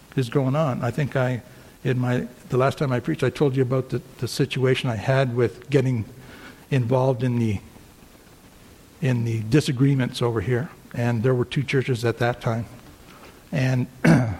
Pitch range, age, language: 120-140 Hz, 60-79, English